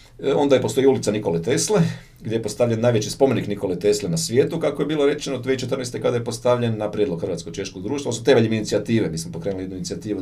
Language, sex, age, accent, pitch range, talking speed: Croatian, male, 40-59, native, 90-130 Hz, 210 wpm